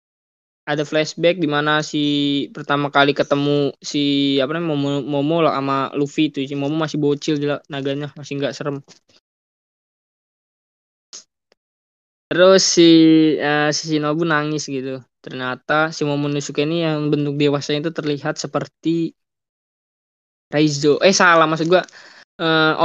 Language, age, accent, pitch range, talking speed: Indonesian, 20-39, native, 145-170 Hz, 125 wpm